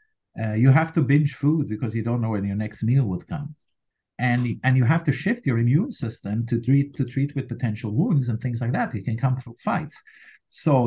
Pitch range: 115-150 Hz